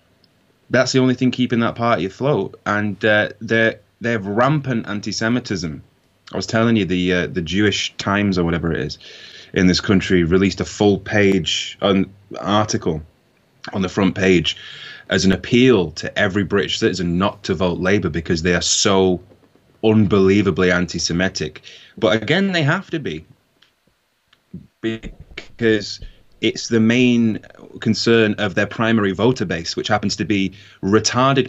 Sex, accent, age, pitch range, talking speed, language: male, British, 20-39, 90-115 Hz, 150 wpm, English